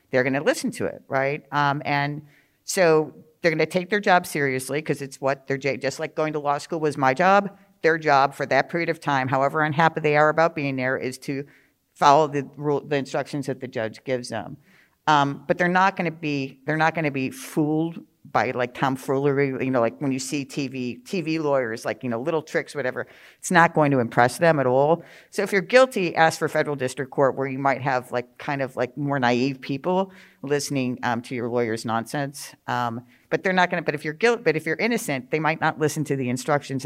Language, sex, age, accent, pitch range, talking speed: English, female, 50-69, American, 130-160 Hz, 225 wpm